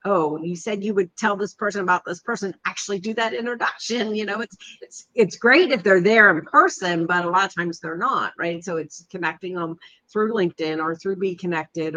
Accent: American